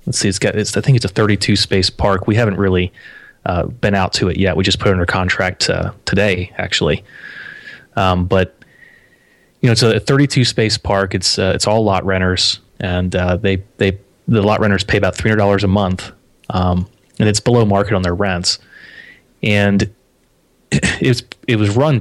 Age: 30-49